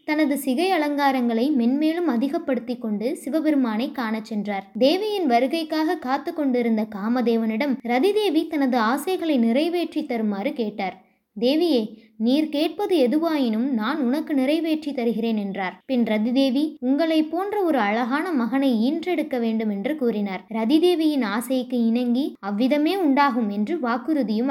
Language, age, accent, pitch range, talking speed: Tamil, 20-39, native, 230-305 Hz, 115 wpm